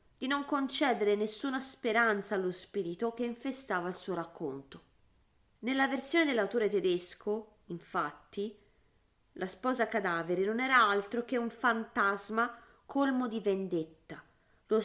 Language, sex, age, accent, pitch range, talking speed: Italian, female, 30-49, native, 185-235 Hz, 120 wpm